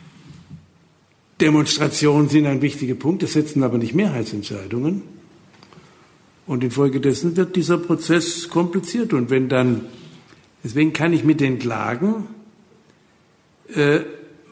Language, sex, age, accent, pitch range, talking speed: German, male, 60-79, German, 130-170 Hz, 105 wpm